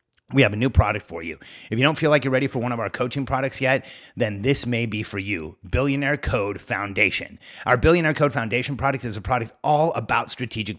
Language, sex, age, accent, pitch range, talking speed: English, male, 30-49, American, 105-135 Hz, 230 wpm